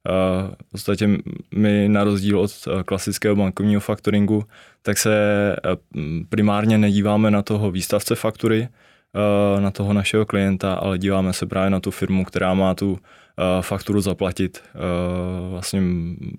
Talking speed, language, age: 145 wpm, Czech, 20-39